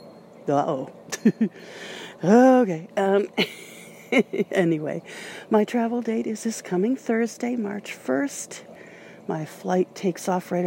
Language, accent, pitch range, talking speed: English, American, 155-205 Hz, 100 wpm